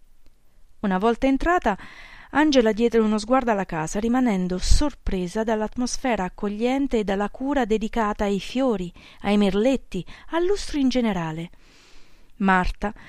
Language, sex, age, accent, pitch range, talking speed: Italian, female, 40-59, native, 180-225 Hz, 115 wpm